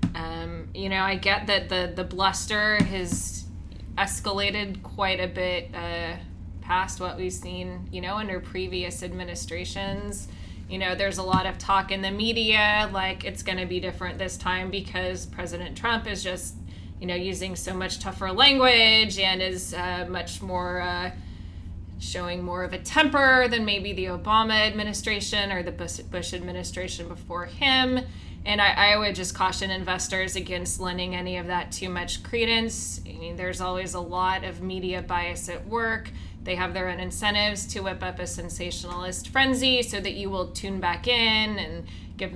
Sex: female